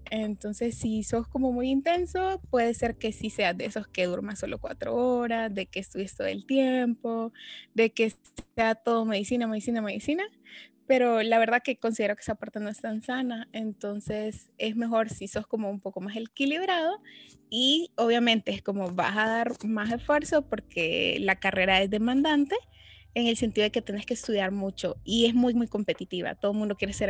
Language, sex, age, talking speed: Spanish, female, 20-39, 190 wpm